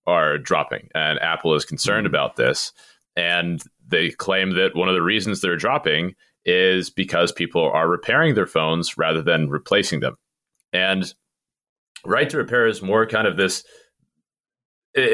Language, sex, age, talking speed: English, male, 30-49, 155 wpm